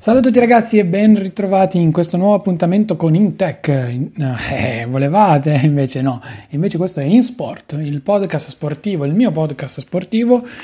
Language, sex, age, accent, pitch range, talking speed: Italian, male, 30-49, native, 140-190 Hz, 165 wpm